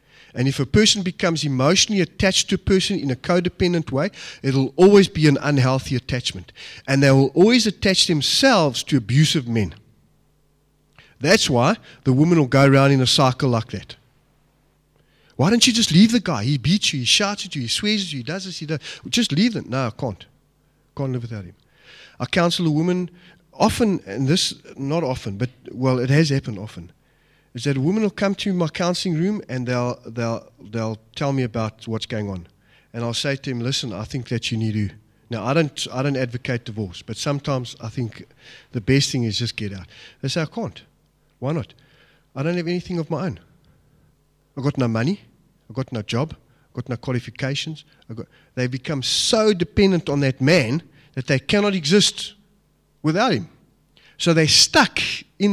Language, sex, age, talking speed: English, male, 30-49, 195 wpm